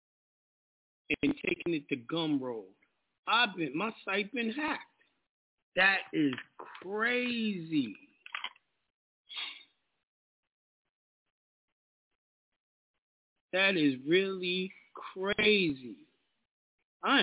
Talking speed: 65 wpm